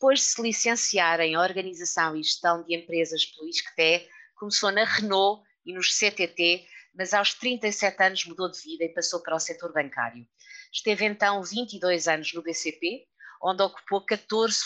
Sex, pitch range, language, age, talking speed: female, 165-210 Hz, Portuguese, 20-39, 165 wpm